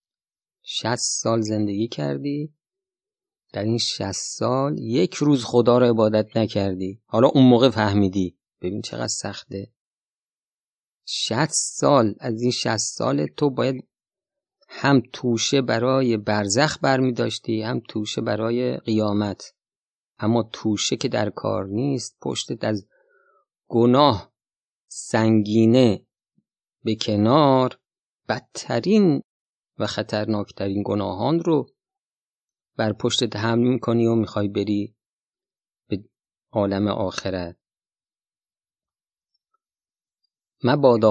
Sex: male